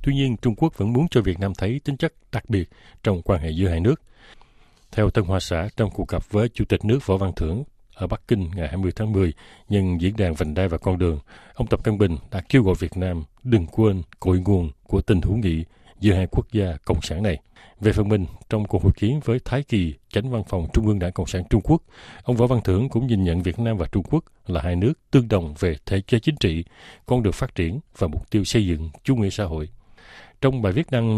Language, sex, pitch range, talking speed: Vietnamese, male, 90-115 Hz, 255 wpm